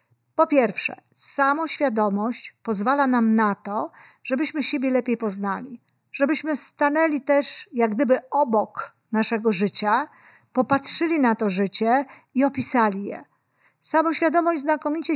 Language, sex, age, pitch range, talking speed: Polish, female, 50-69, 220-280 Hz, 110 wpm